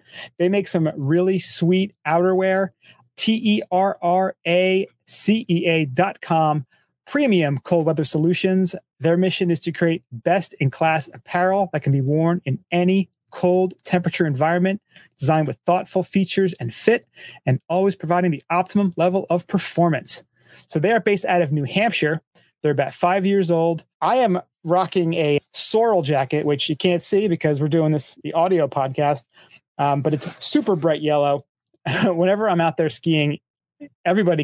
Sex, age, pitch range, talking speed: male, 30-49, 150-185 Hz, 145 wpm